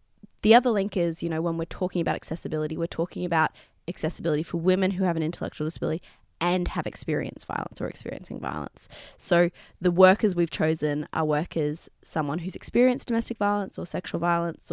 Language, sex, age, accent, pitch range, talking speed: English, female, 20-39, Australian, 160-185 Hz, 180 wpm